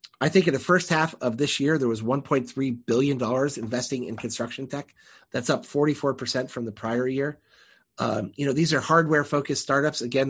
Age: 30-49